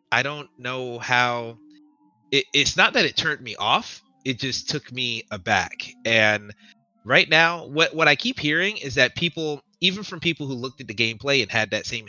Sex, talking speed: male, 195 wpm